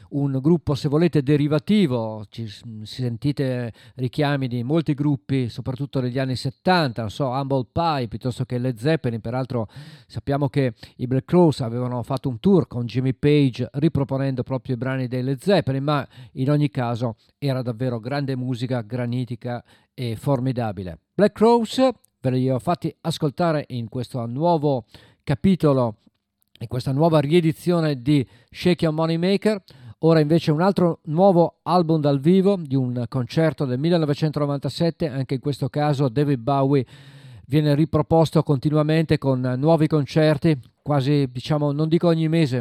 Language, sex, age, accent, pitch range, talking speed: Italian, male, 50-69, native, 125-155 Hz, 150 wpm